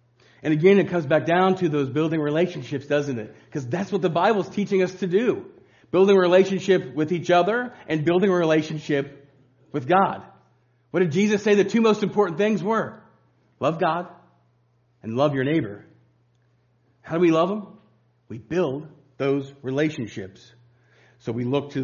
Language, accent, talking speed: English, American, 175 wpm